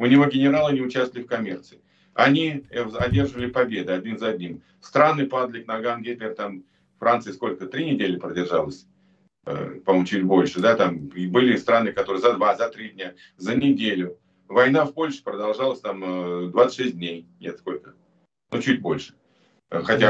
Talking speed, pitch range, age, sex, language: 150 wpm, 105-140 Hz, 50-69, male, Russian